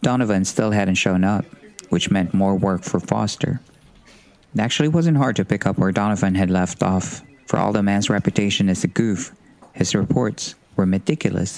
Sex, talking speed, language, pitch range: male, 180 wpm, Filipino, 95-115 Hz